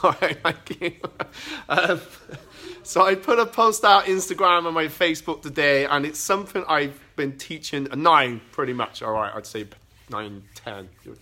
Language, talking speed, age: English, 175 wpm, 30-49